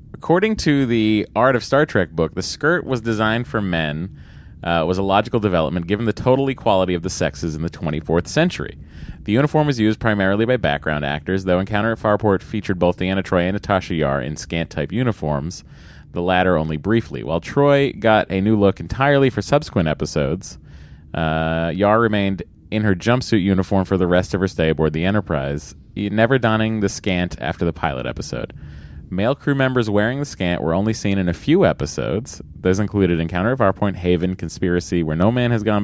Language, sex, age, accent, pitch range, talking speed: English, male, 30-49, American, 80-110 Hz, 195 wpm